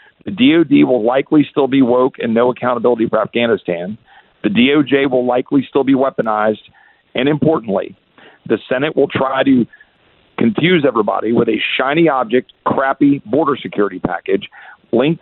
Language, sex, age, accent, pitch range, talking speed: English, male, 50-69, American, 125-170 Hz, 145 wpm